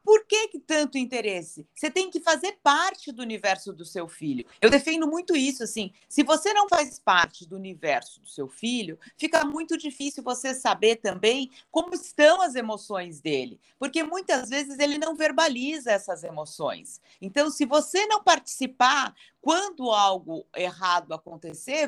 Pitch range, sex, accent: 210-315 Hz, female, Brazilian